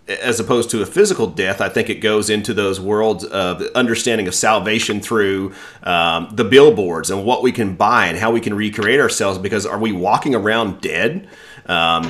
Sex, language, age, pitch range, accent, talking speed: male, English, 30-49, 90-110 Hz, American, 195 wpm